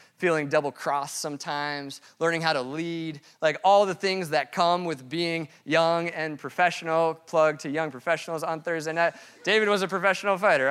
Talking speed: 170 wpm